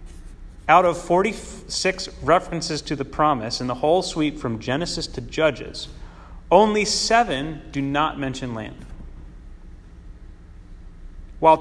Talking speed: 115 wpm